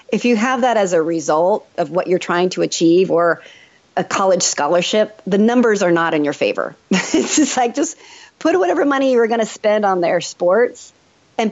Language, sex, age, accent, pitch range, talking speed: English, female, 40-59, American, 175-245 Hz, 205 wpm